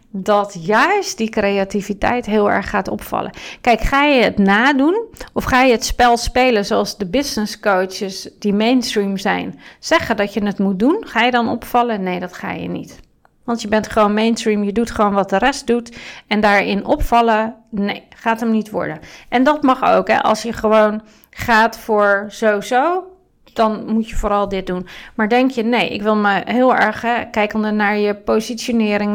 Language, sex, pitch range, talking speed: Dutch, female, 205-245 Hz, 185 wpm